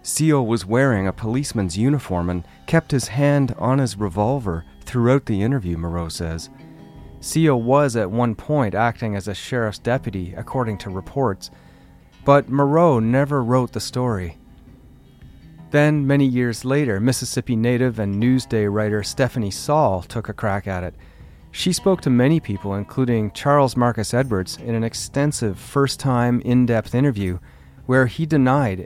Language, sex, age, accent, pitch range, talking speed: English, male, 40-59, American, 105-135 Hz, 150 wpm